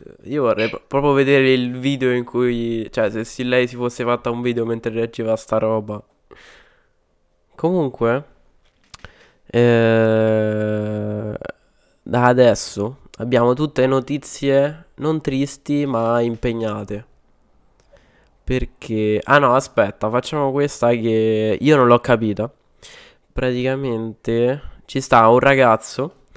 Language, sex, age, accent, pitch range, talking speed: Italian, male, 20-39, native, 110-130 Hz, 110 wpm